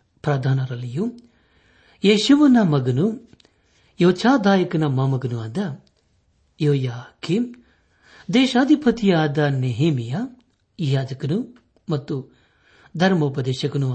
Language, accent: Kannada, native